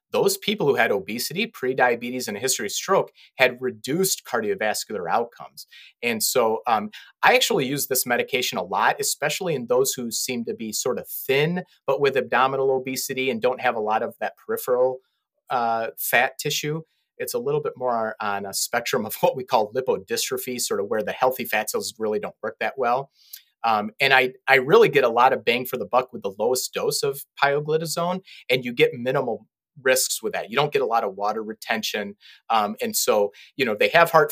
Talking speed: 205 wpm